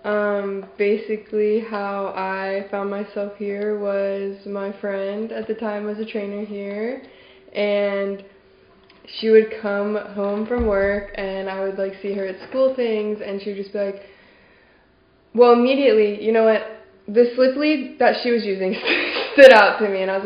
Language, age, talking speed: English, 20-39, 170 wpm